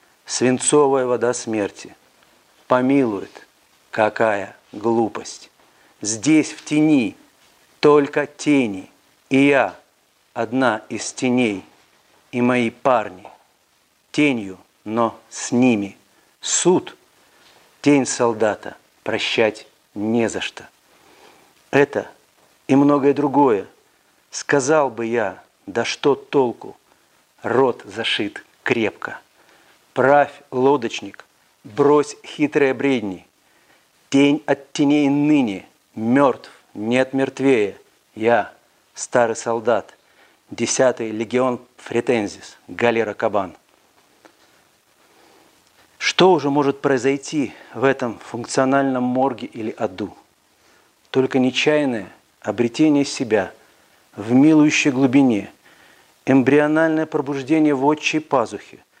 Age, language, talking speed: 50-69, Russian, 85 wpm